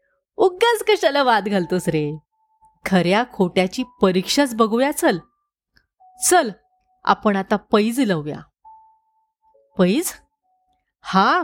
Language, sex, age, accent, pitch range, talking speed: Marathi, female, 30-49, native, 185-310 Hz, 90 wpm